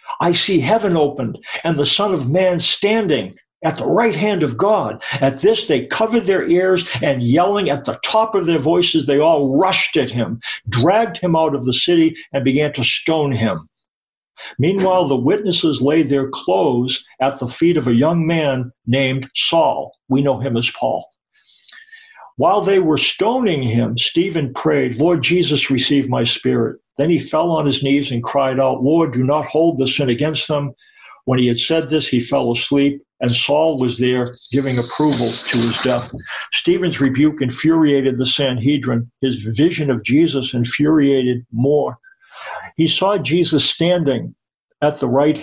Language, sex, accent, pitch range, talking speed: English, male, American, 130-165 Hz, 170 wpm